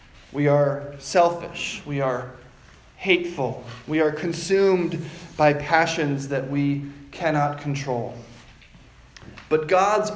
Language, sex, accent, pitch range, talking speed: English, male, American, 145-200 Hz, 100 wpm